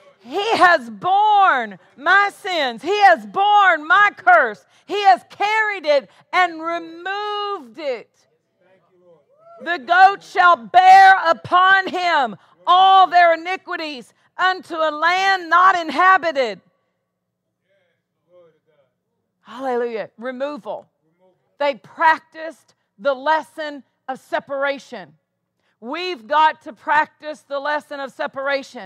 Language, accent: English, American